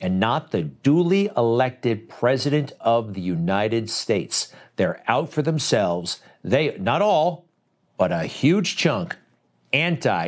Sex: male